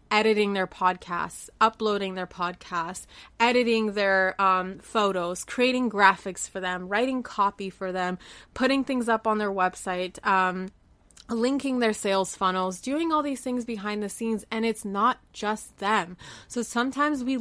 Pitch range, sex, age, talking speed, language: 200-245 Hz, female, 20-39, 150 wpm, English